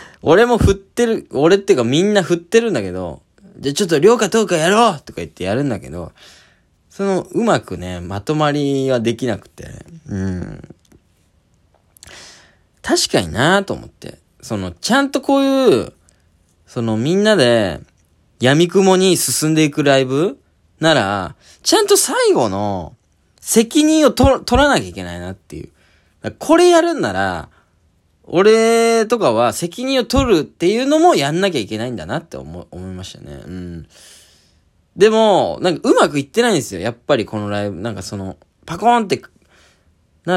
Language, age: Japanese, 20-39